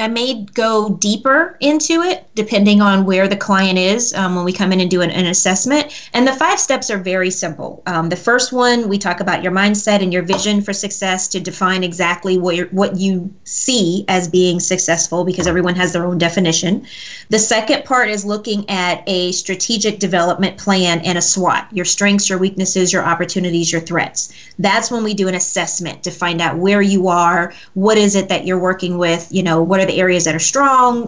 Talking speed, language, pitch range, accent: 210 wpm, English, 180-215 Hz, American